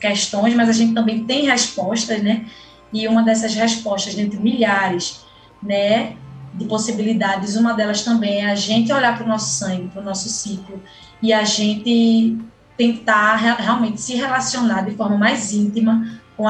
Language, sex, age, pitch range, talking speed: Portuguese, female, 20-39, 200-230 Hz, 160 wpm